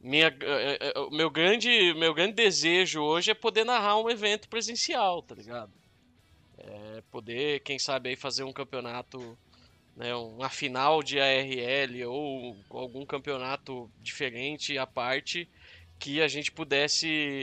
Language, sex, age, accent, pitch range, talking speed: Portuguese, male, 20-39, Brazilian, 125-155 Hz, 130 wpm